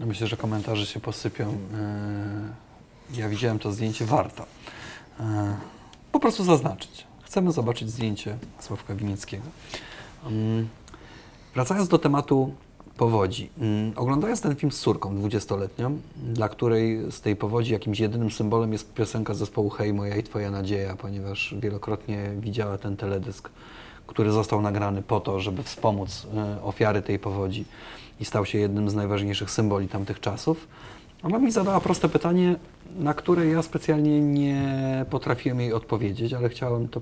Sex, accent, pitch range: male, native, 105-140 Hz